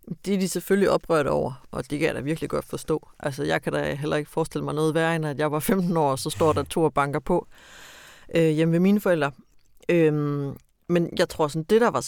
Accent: native